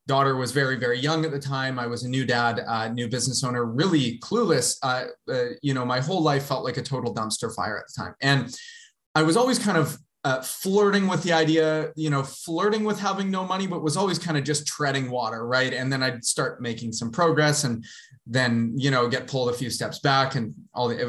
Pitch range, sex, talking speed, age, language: 125-160 Hz, male, 240 wpm, 20-39, English